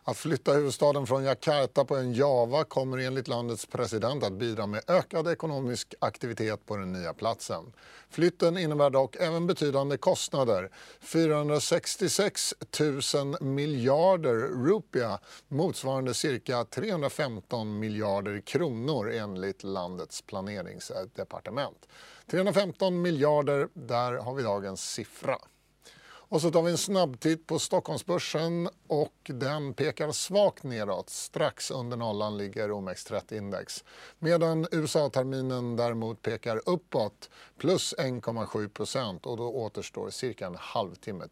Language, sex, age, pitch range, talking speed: English, male, 40-59, 110-165 Hz, 115 wpm